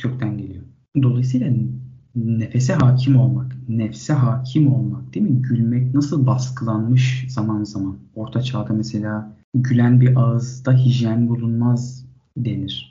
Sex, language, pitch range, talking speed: male, Turkish, 110-130 Hz, 115 wpm